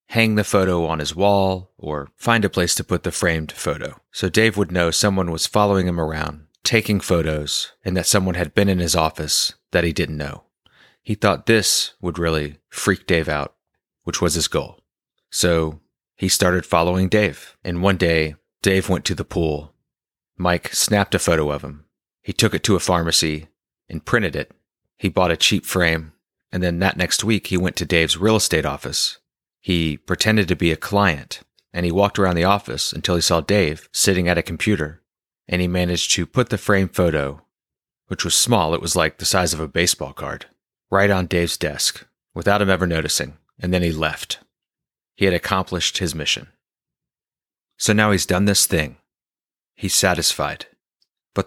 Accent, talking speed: American, 185 wpm